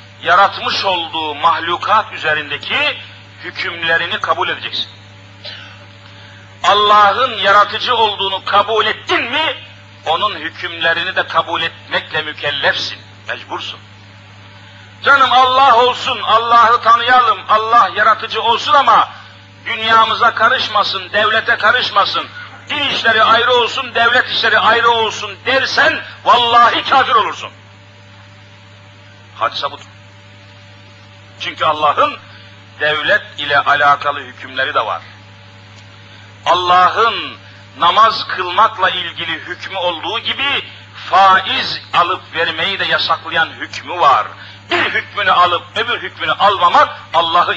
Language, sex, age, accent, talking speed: Turkish, male, 50-69, native, 95 wpm